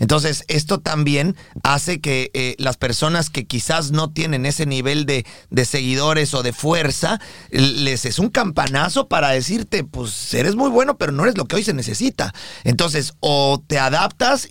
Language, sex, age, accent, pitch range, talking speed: Spanish, male, 40-59, Mexican, 130-170 Hz, 175 wpm